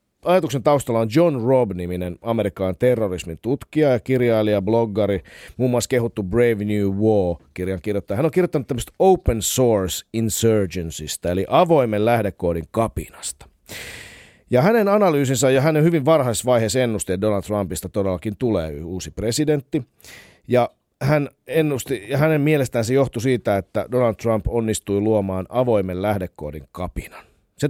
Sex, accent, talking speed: male, native, 135 wpm